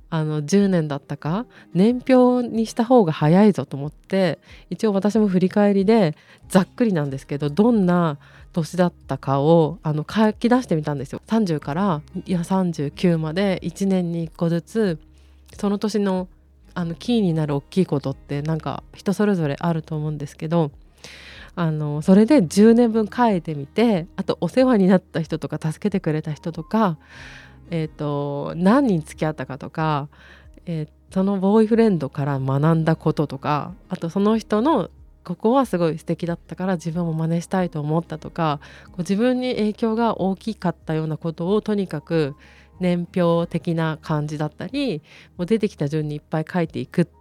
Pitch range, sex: 155-205 Hz, female